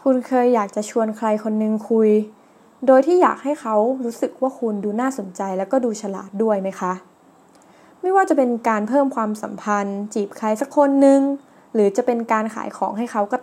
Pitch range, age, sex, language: 205-265 Hz, 20-39, female, Thai